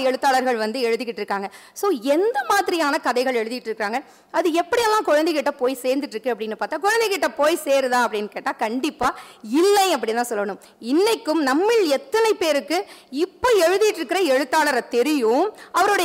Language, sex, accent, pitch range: Tamil, female, native, 250-355 Hz